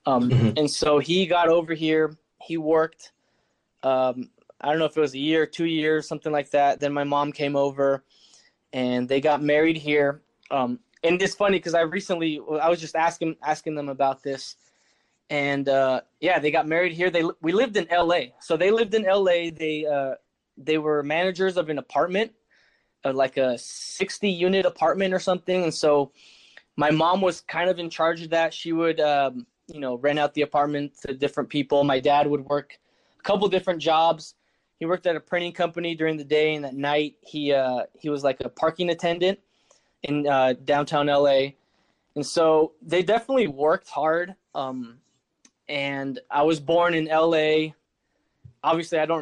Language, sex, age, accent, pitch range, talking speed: English, male, 20-39, American, 145-170 Hz, 185 wpm